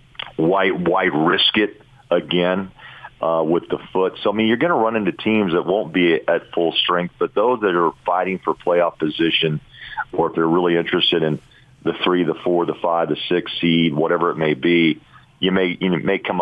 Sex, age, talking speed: male, 40-59, 205 wpm